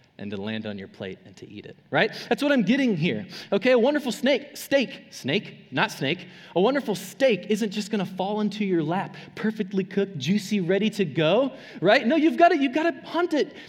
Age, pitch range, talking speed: 20-39, 180-250 Hz, 210 wpm